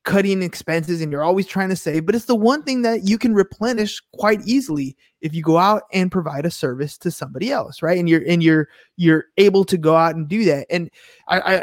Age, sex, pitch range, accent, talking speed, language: 20-39, male, 160-230 Hz, American, 230 wpm, English